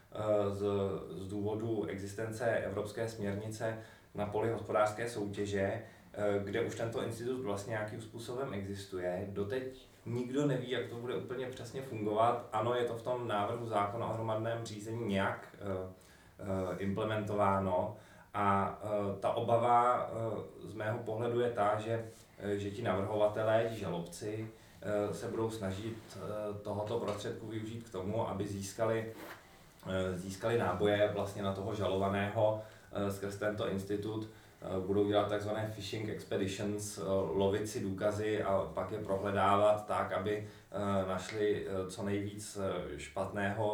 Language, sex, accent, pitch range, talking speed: Czech, male, native, 100-110 Hz, 130 wpm